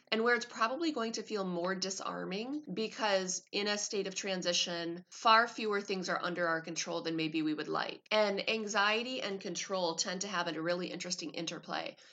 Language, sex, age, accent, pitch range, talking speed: English, female, 30-49, American, 170-205 Hz, 190 wpm